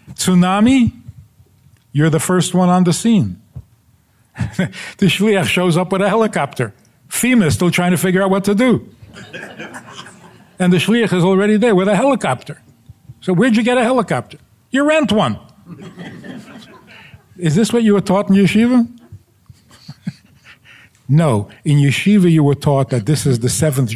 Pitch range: 120-180 Hz